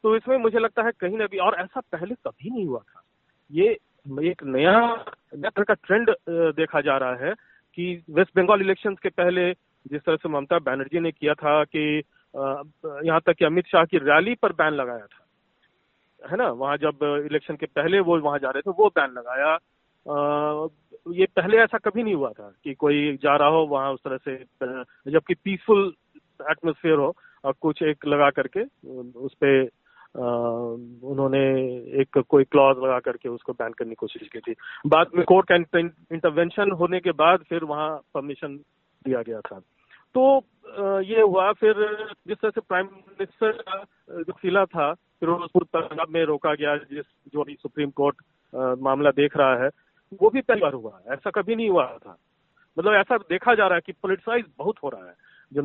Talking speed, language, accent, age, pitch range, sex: 180 wpm, Hindi, native, 40-59, 145-200 Hz, male